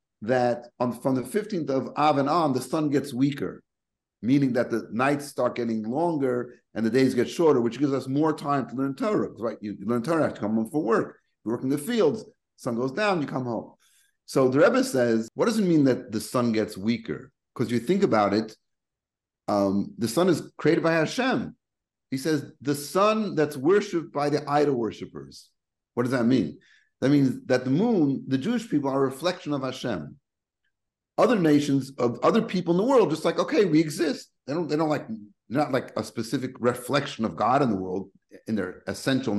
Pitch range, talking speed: 120-160 Hz, 210 wpm